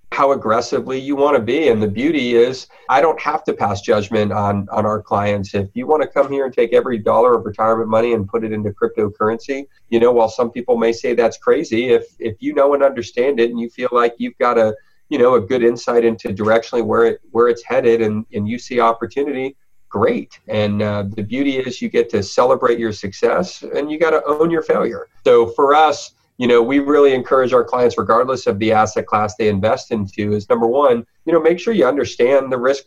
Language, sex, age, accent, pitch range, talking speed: English, male, 40-59, American, 105-145 Hz, 230 wpm